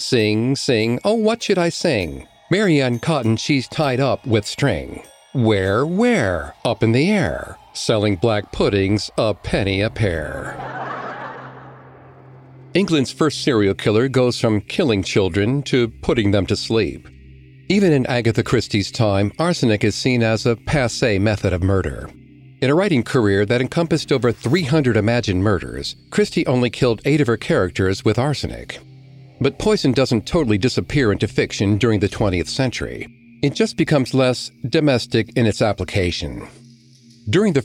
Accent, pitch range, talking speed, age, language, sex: American, 105-135 Hz, 150 wpm, 50-69, English, male